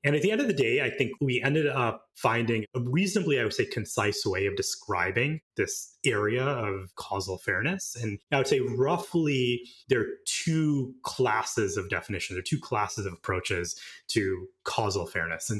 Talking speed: 185 wpm